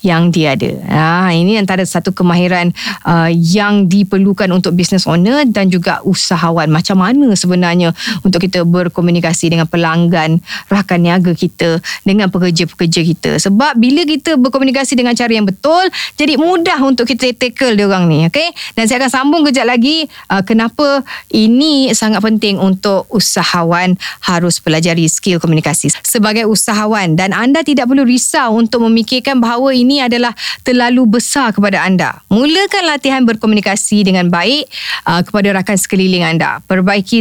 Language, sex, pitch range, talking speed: Indonesian, female, 180-245 Hz, 145 wpm